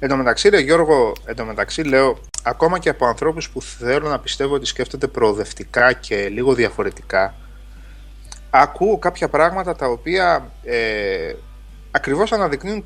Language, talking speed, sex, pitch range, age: Greek, 140 wpm, male, 125-175 Hz, 30-49